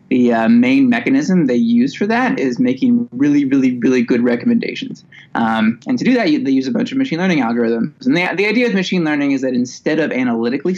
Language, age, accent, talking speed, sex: English, 20-39, American, 230 wpm, male